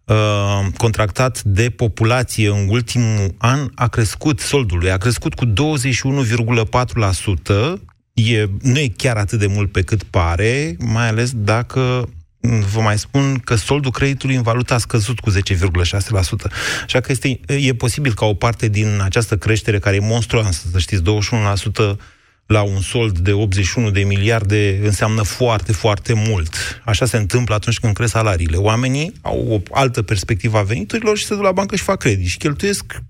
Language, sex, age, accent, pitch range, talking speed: Romanian, male, 30-49, native, 100-125 Hz, 165 wpm